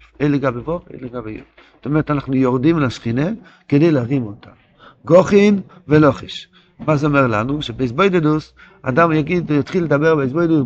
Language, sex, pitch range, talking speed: Hebrew, male, 140-185 Hz, 145 wpm